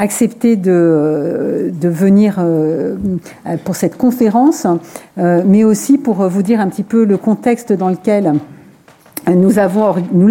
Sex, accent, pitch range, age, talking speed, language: female, French, 170-215 Hz, 50-69, 120 wpm, French